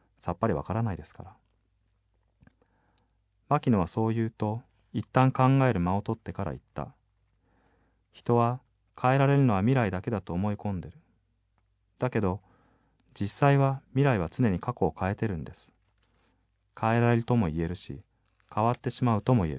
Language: Japanese